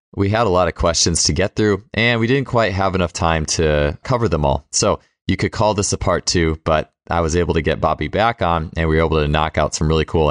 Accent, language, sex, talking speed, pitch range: American, English, male, 275 wpm, 75-90 Hz